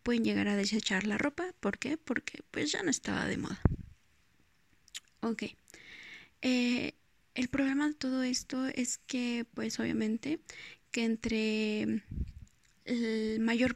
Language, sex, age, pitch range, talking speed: Spanish, female, 20-39, 220-250 Hz, 120 wpm